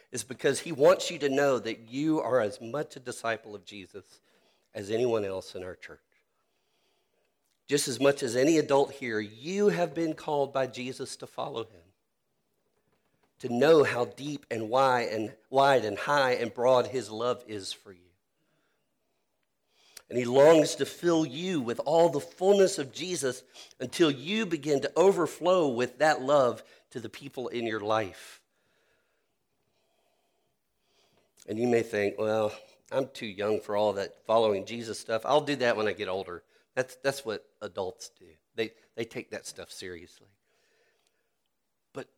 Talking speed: 160 wpm